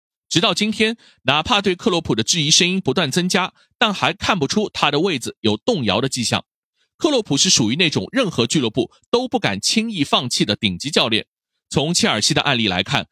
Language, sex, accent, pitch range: Chinese, male, native, 135-225 Hz